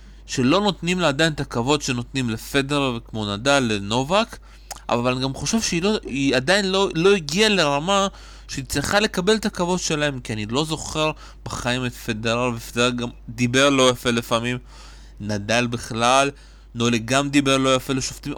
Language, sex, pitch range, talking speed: Hebrew, male, 120-150 Hz, 160 wpm